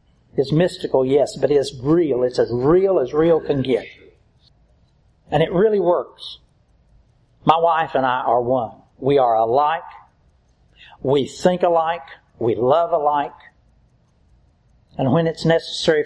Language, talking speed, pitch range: English, 135 wpm, 115-150 Hz